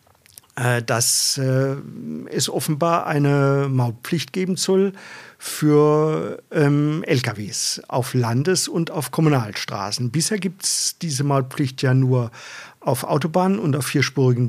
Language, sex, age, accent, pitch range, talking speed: German, male, 50-69, German, 135-170 Hz, 110 wpm